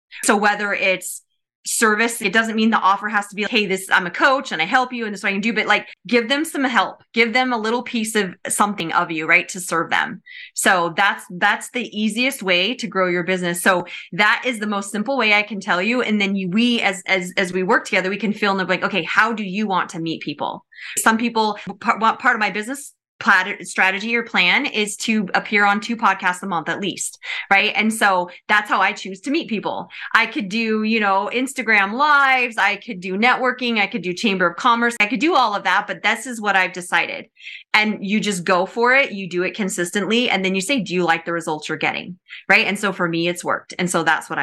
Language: English